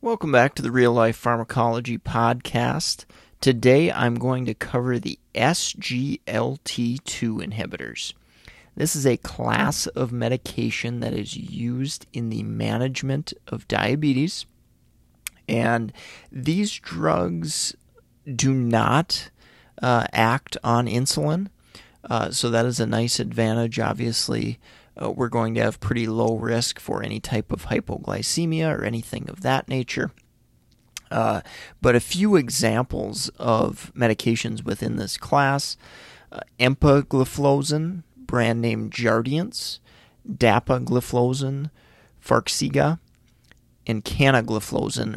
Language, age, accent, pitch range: English, 30-49, American, 115-135 Hz